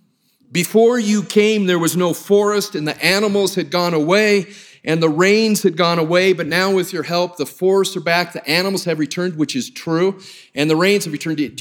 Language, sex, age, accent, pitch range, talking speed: English, male, 40-59, American, 170-215 Hz, 210 wpm